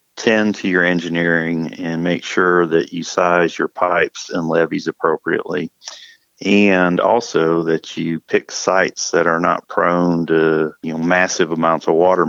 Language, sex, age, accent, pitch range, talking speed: English, male, 40-59, American, 80-90 Hz, 155 wpm